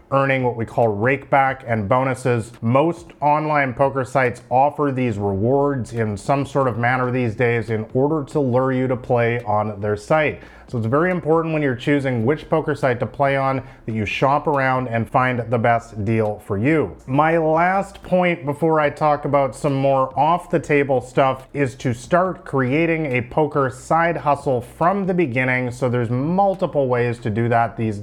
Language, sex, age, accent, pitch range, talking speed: English, male, 30-49, American, 125-155 Hz, 190 wpm